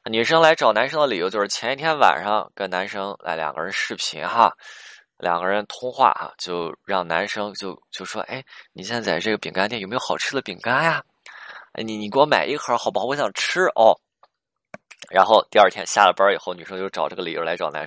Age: 20-39